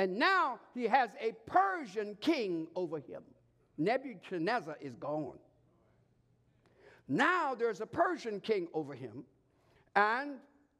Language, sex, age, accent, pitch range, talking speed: English, male, 60-79, American, 185-290 Hz, 110 wpm